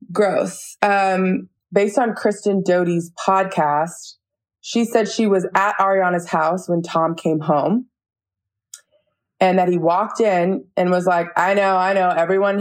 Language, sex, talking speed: English, female, 145 wpm